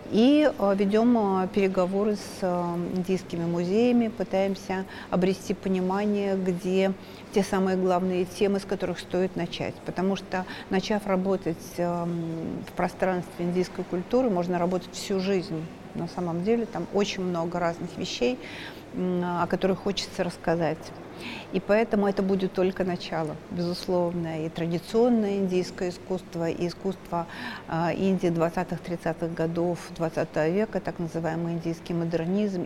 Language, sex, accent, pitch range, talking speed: Russian, female, native, 170-195 Hz, 120 wpm